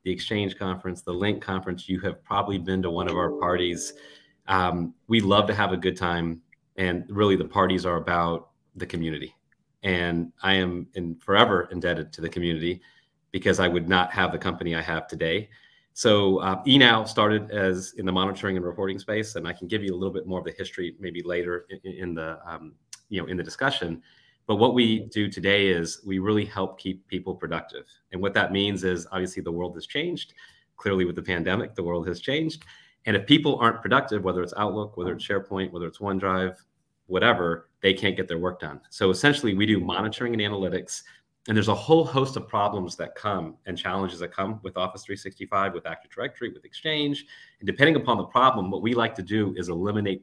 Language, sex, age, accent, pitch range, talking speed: English, male, 30-49, American, 90-105 Hz, 210 wpm